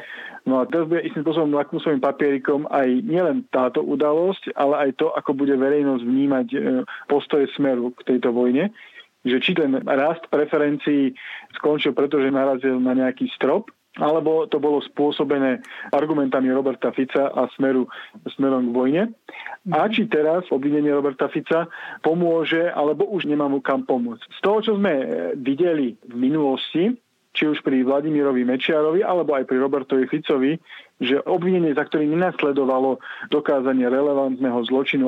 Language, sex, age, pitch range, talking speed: Slovak, male, 40-59, 135-155 Hz, 145 wpm